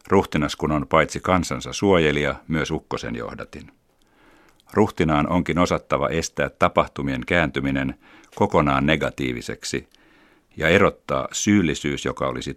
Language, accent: Finnish, native